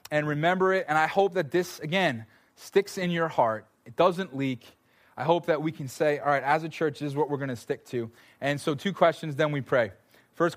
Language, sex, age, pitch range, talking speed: English, male, 20-39, 130-170 Hz, 245 wpm